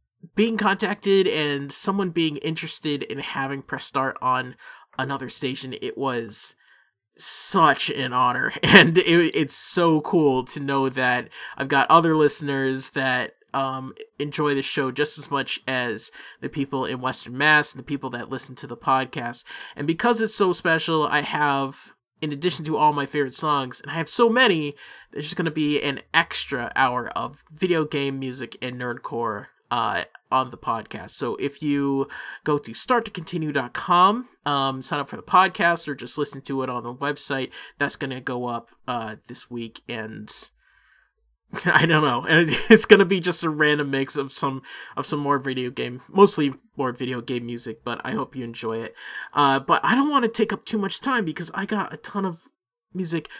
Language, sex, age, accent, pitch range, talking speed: English, male, 20-39, American, 130-165 Hz, 185 wpm